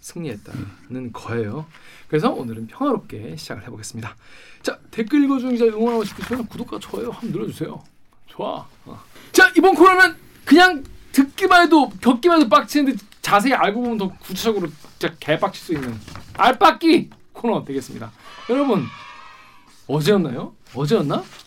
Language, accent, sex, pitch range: Korean, native, male, 140-230 Hz